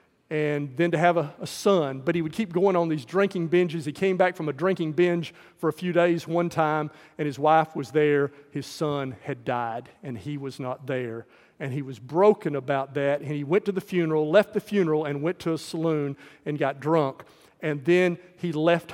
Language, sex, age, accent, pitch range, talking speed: English, male, 40-59, American, 150-180 Hz, 220 wpm